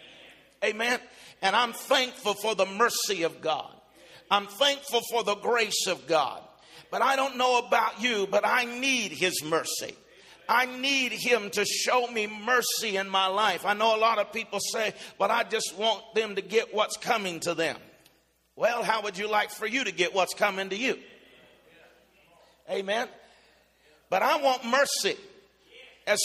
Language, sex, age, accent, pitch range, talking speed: English, male, 50-69, American, 205-245 Hz, 170 wpm